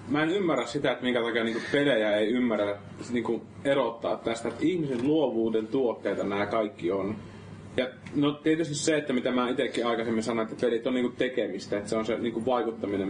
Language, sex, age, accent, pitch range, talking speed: Finnish, male, 30-49, native, 105-125 Hz, 170 wpm